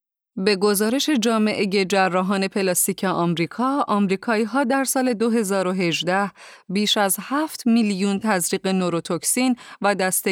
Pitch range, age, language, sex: 180-230 Hz, 30-49, Persian, female